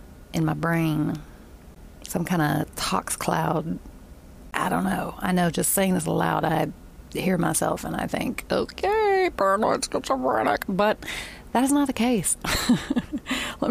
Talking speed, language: 145 wpm, English